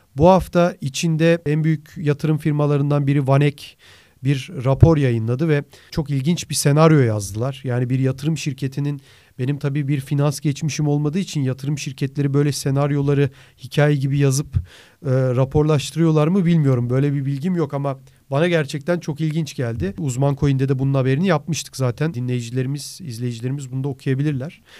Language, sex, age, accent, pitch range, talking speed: Turkish, male, 40-59, native, 135-160 Hz, 150 wpm